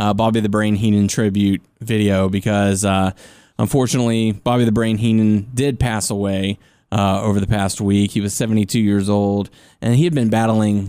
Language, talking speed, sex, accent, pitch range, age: English, 175 wpm, male, American, 100-120 Hz, 20-39